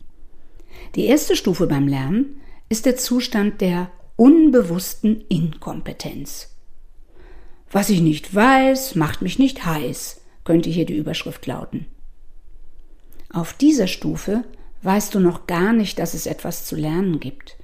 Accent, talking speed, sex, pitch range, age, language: German, 130 wpm, female, 170-240 Hz, 50-69, German